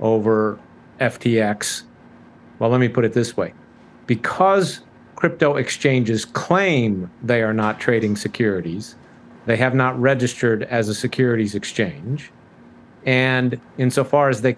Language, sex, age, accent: English, male, 50-69, American